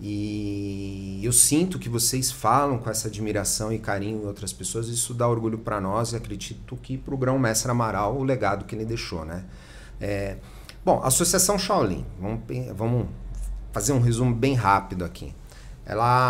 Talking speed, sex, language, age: 175 wpm, male, Portuguese, 40-59